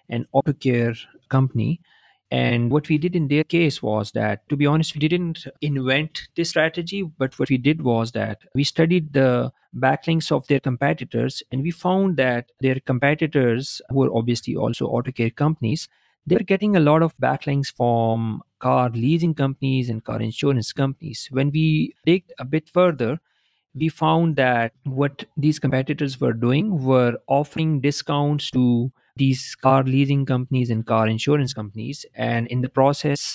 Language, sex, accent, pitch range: English, male, Indian, 120-150 Hz